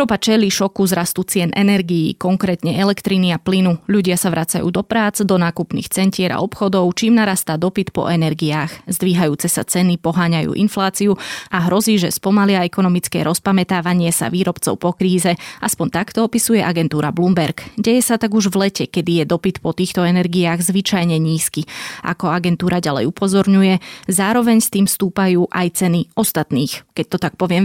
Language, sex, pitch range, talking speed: Slovak, female, 170-205 Hz, 160 wpm